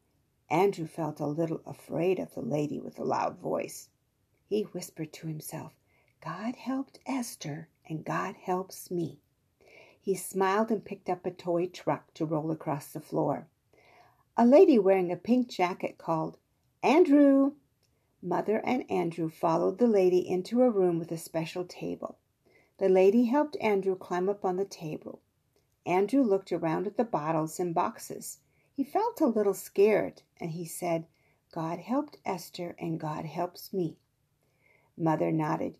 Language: English